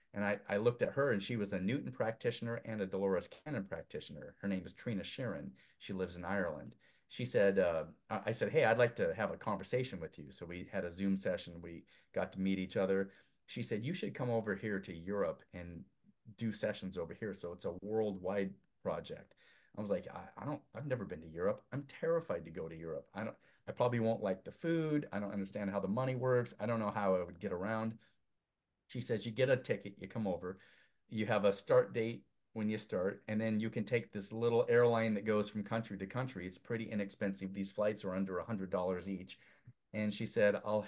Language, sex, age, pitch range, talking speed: English, male, 40-59, 95-115 Hz, 230 wpm